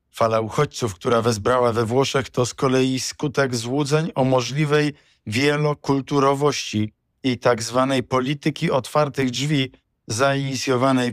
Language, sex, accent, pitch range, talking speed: Polish, male, native, 110-130 Hz, 115 wpm